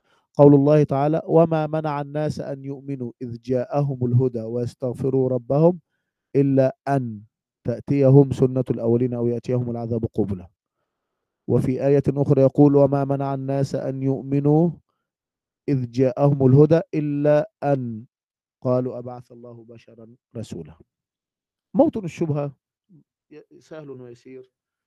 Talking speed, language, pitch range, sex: 110 wpm, Arabic, 125-155 Hz, male